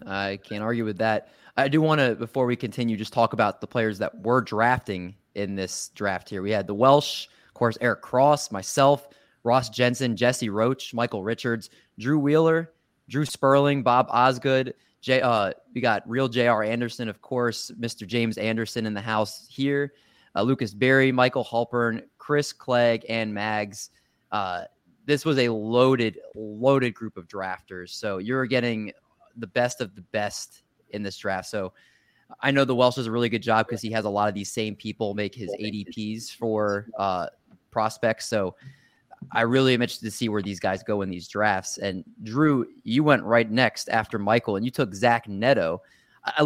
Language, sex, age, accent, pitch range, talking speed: English, male, 20-39, American, 110-130 Hz, 180 wpm